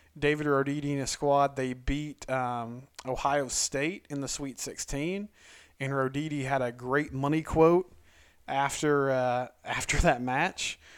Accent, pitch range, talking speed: American, 130-145 Hz, 140 wpm